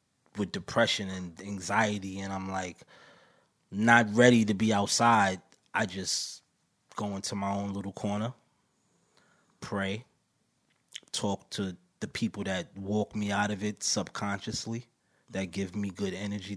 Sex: male